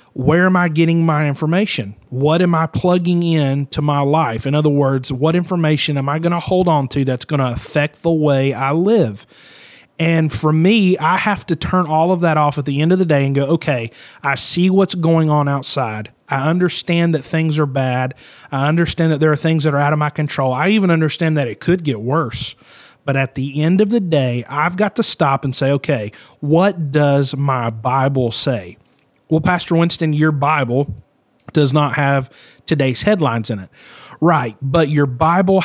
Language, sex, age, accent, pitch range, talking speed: English, male, 30-49, American, 135-165 Hz, 205 wpm